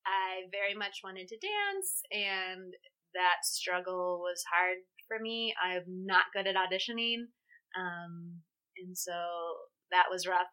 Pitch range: 180-205 Hz